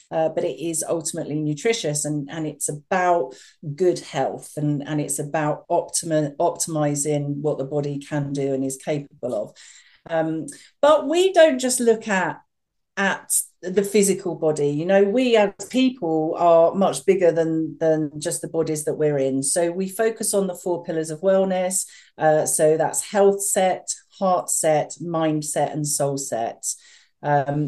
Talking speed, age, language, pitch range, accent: 165 wpm, 40-59, English, 150-185 Hz, British